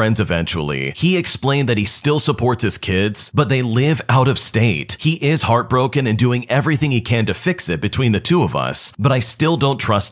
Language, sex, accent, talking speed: English, male, American, 215 wpm